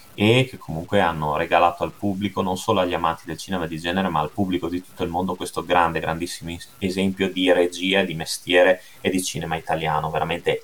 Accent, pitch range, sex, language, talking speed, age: native, 90-115 Hz, male, Italian, 200 wpm, 30-49